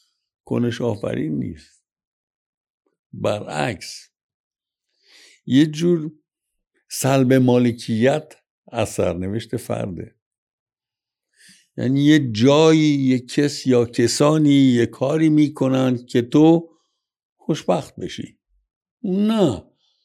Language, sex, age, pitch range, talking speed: Persian, male, 60-79, 110-150 Hz, 80 wpm